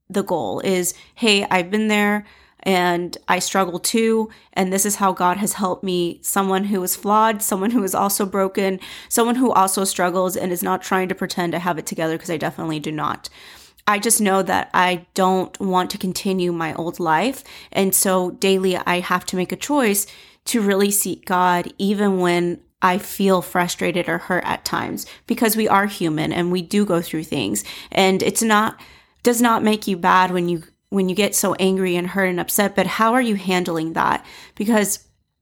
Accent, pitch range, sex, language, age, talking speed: American, 180-210 Hz, female, English, 30-49, 200 wpm